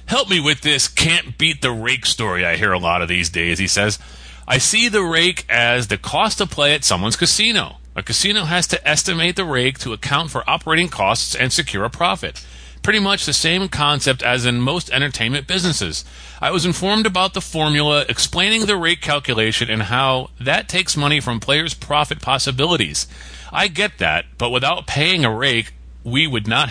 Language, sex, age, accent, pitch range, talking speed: English, male, 40-59, American, 105-155 Hz, 195 wpm